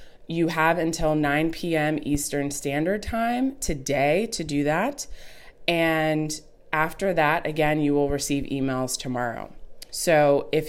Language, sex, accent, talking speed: English, female, American, 130 wpm